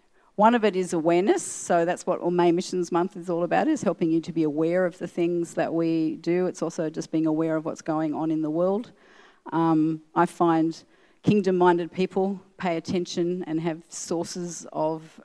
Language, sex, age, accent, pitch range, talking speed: English, female, 40-59, Australian, 160-190 Hz, 195 wpm